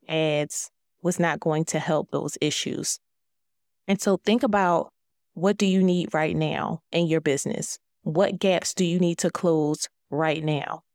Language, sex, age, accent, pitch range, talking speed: English, female, 20-39, American, 155-185 Hz, 165 wpm